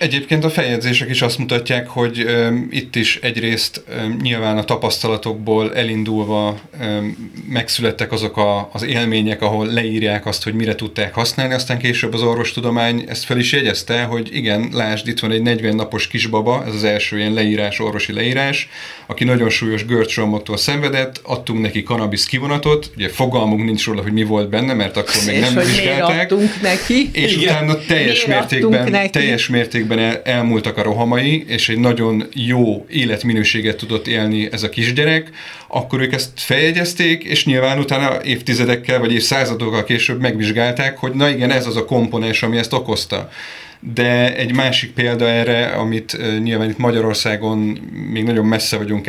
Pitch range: 110-125 Hz